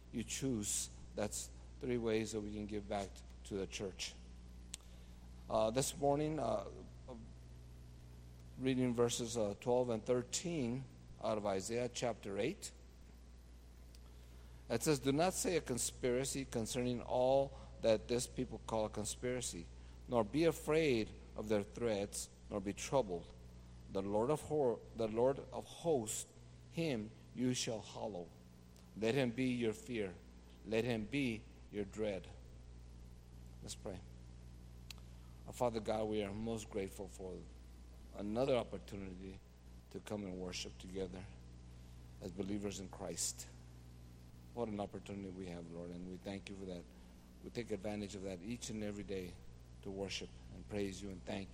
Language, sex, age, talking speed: English, male, 50-69, 140 wpm